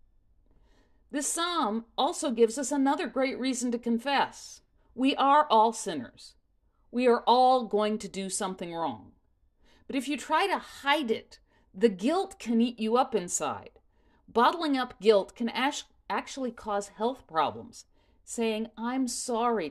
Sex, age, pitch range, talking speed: female, 50-69, 190-265 Hz, 145 wpm